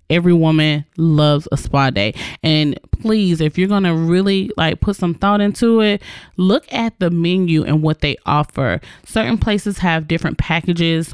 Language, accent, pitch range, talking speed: English, American, 160-205 Hz, 170 wpm